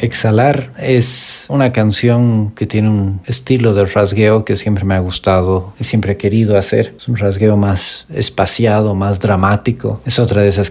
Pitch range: 100-115 Hz